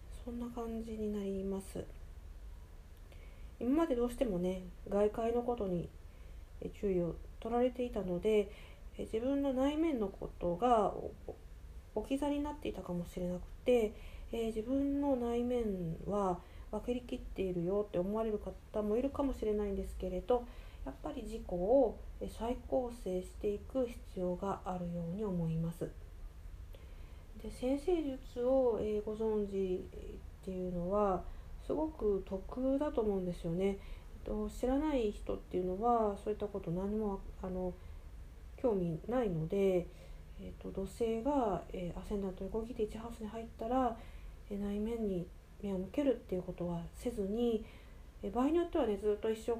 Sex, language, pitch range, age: female, Japanese, 180-235 Hz, 40-59